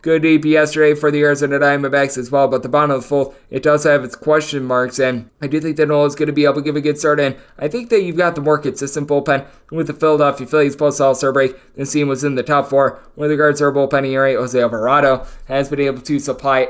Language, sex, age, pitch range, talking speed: English, male, 20-39, 140-160 Hz, 260 wpm